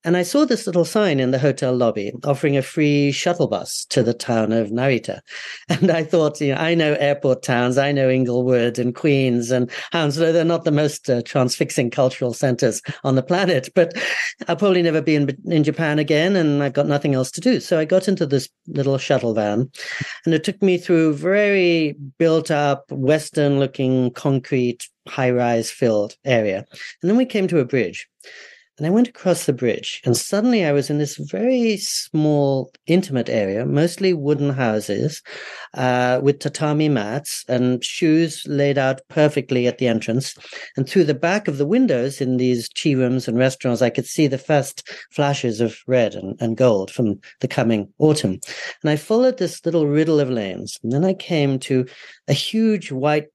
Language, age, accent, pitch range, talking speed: English, 40-59, British, 125-165 Hz, 185 wpm